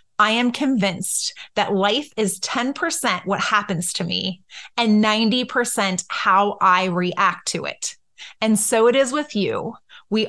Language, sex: English, female